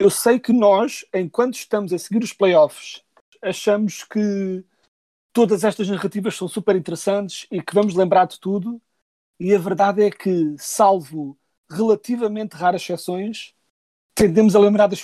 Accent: Portuguese